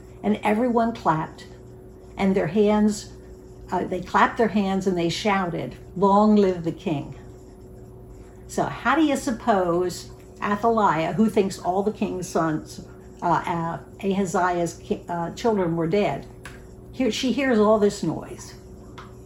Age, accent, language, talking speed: 60-79, American, English, 130 wpm